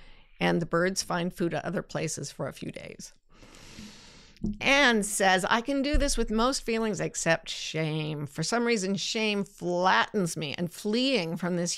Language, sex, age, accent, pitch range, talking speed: English, female, 50-69, American, 160-200 Hz, 170 wpm